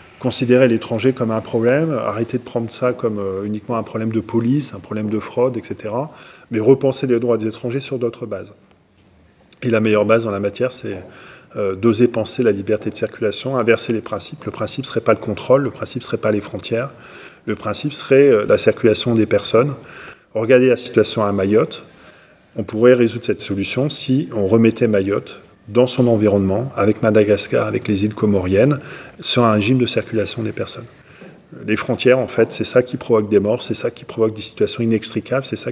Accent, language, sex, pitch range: French, French, male, 105-125 Hz